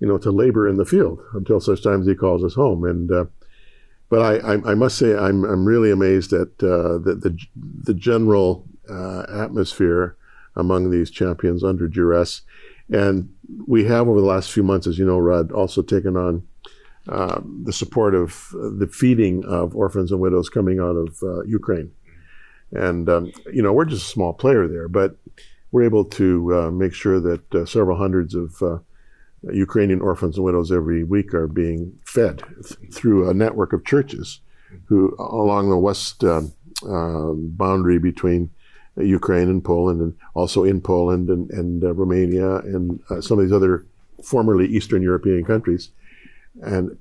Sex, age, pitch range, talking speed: male, 50-69, 90-100 Hz, 175 wpm